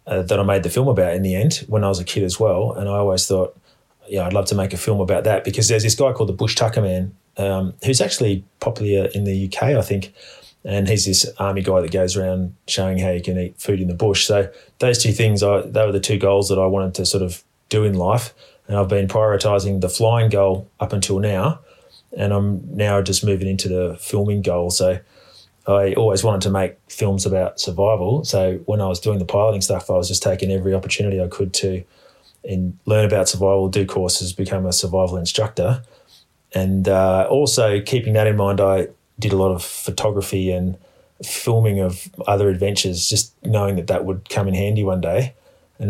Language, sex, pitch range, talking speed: English, male, 95-105 Hz, 220 wpm